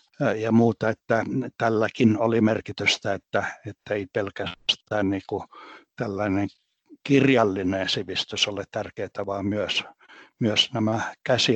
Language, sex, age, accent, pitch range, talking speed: Finnish, male, 60-79, native, 105-125 Hz, 110 wpm